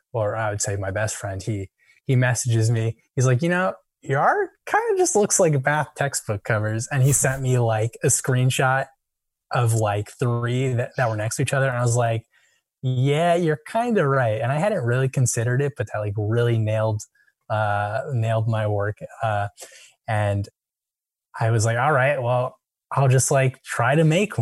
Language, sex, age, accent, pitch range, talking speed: English, male, 10-29, American, 110-130 Hz, 200 wpm